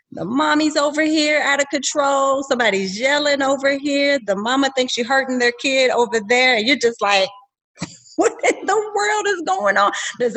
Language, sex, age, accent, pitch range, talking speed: English, female, 30-49, American, 190-270 Hz, 185 wpm